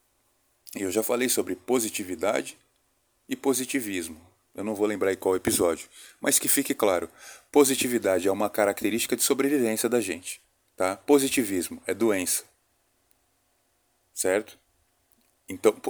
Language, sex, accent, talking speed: Portuguese, male, Brazilian, 120 wpm